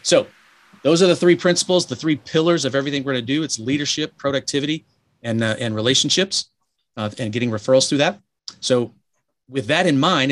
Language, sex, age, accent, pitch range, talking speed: English, male, 30-49, American, 115-140 Hz, 190 wpm